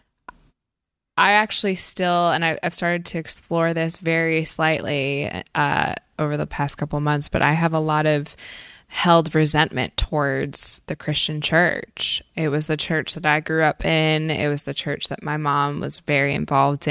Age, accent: 20-39, American